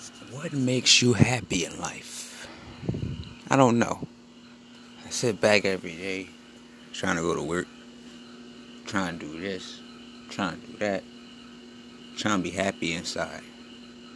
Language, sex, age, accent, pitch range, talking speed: English, male, 30-49, American, 100-120 Hz, 135 wpm